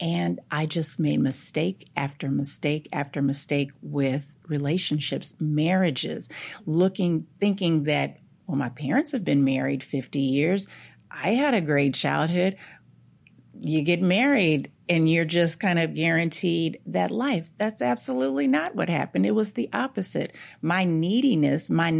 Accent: American